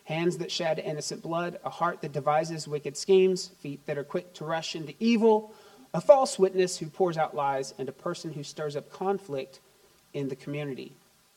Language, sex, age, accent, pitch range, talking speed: English, male, 40-59, American, 165-200 Hz, 190 wpm